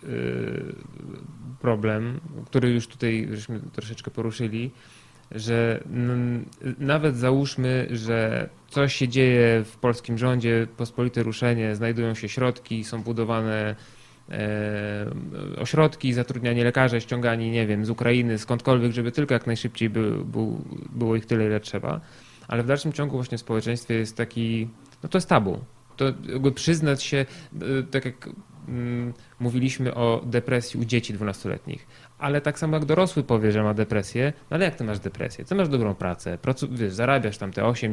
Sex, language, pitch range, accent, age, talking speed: male, Polish, 115-135 Hz, native, 20-39, 150 wpm